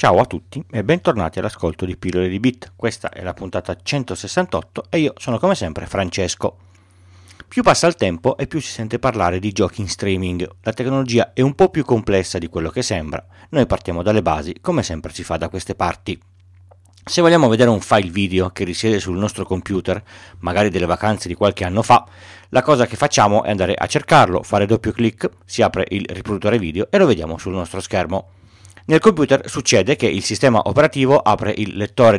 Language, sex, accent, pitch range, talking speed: Italian, male, native, 95-120 Hz, 200 wpm